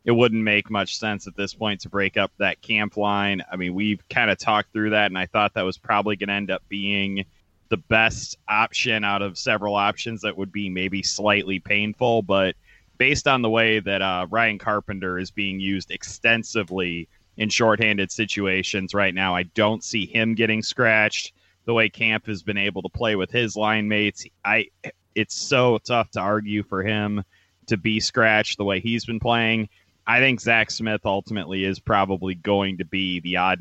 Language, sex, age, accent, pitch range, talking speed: English, male, 30-49, American, 95-115 Hz, 195 wpm